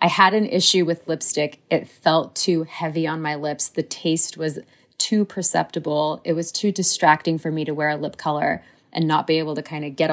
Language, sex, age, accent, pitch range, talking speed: English, female, 30-49, American, 150-175 Hz, 220 wpm